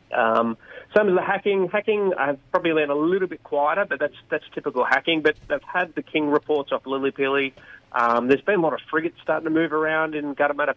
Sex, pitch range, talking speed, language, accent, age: male, 120-155 Hz, 240 wpm, English, Australian, 30-49